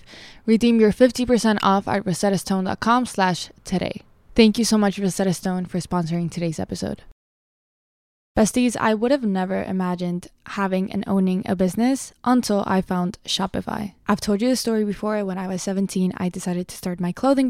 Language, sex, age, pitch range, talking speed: English, female, 10-29, 185-225 Hz, 170 wpm